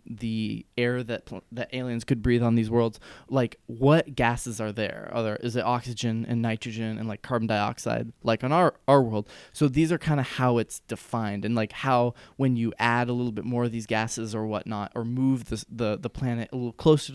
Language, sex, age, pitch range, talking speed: English, male, 20-39, 110-130 Hz, 215 wpm